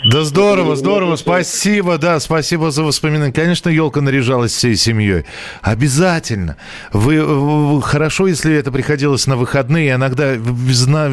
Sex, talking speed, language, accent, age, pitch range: male, 125 wpm, Russian, native, 40-59, 100-135 Hz